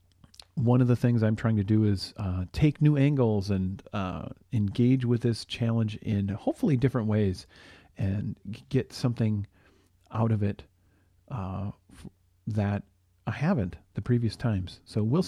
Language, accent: English, American